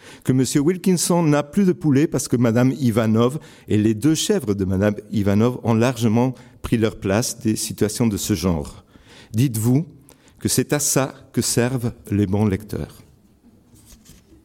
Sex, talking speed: male, 160 wpm